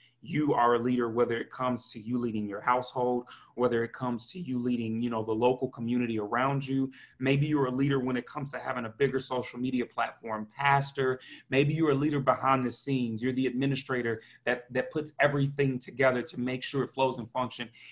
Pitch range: 120-135 Hz